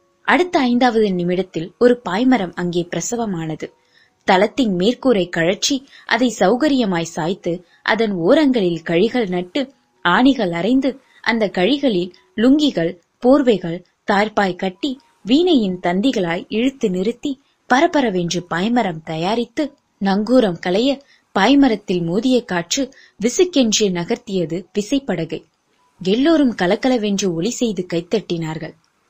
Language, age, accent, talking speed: Tamil, 20-39, native, 80 wpm